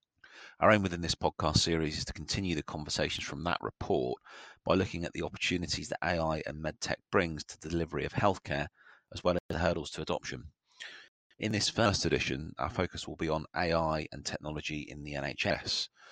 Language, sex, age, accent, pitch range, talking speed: English, male, 30-49, British, 80-95 Hz, 190 wpm